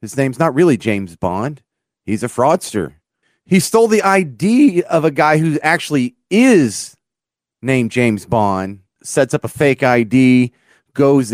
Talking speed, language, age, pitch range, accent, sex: 150 wpm, English, 30-49, 115-160 Hz, American, male